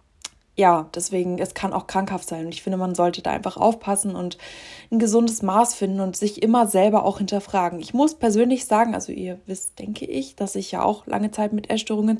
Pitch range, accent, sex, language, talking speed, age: 180-215 Hz, German, female, German, 210 wpm, 20-39